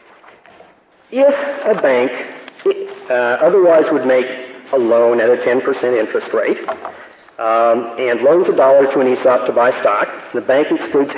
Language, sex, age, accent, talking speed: English, male, 50-69, American, 150 wpm